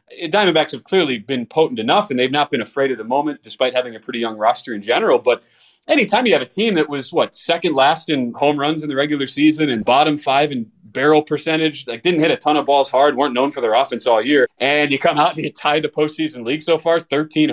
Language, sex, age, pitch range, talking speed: English, male, 20-39, 125-155 Hz, 255 wpm